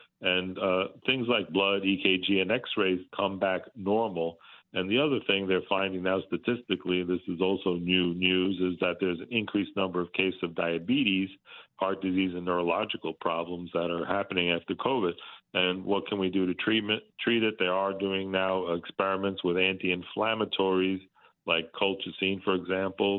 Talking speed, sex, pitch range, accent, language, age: 165 wpm, male, 90-95 Hz, American, English, 50-69